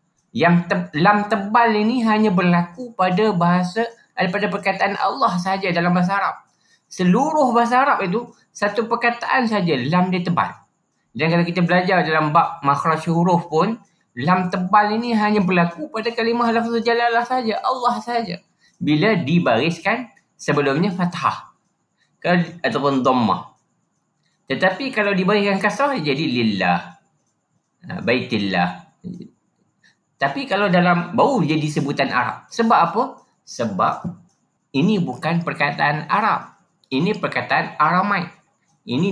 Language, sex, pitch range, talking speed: Malay, male, 145-210 Hz, 120 wpm